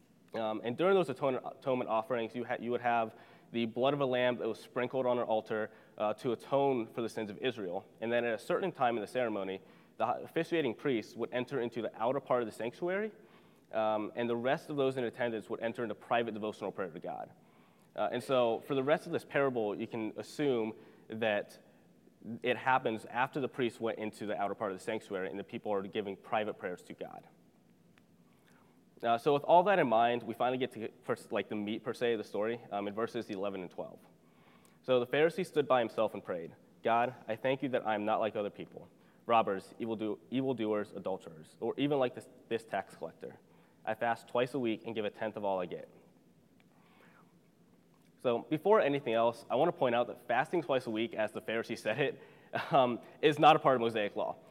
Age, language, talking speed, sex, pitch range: 20-39, English, 220 wpm, male, 110-135 Hz